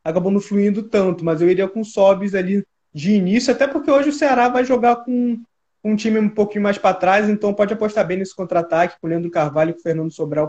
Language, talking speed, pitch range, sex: Portuguese, 240 wpm, 155-200 Hz, male